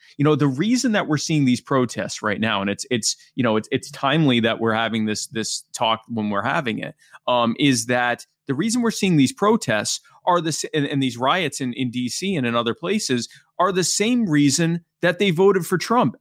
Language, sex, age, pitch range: English, male, 30-49, 130-175 Hz